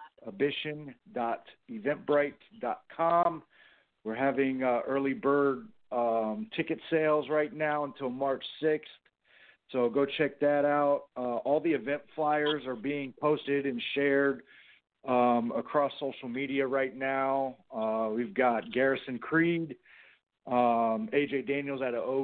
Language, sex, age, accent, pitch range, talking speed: English, male, 40-59, American, 125-145 Hz, 120 wpm